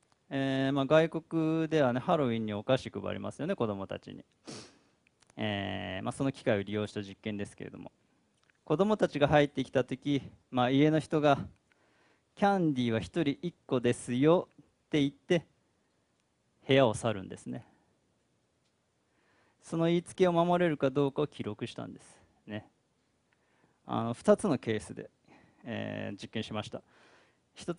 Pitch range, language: 110-150 Hz, Japanese